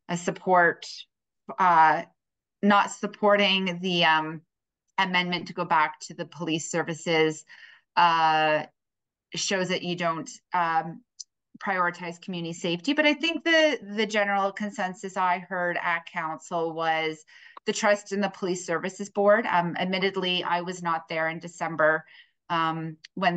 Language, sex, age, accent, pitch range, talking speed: English, female, 30-49, American, 165-195 Hz, 135 wpm